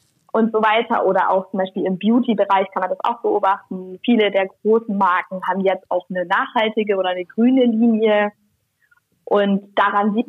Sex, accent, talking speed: female, German, 175 wpm